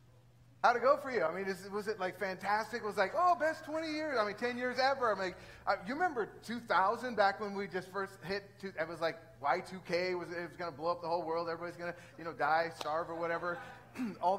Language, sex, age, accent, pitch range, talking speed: English, male, 30-49, American, 155-215 Hz, 255 wpm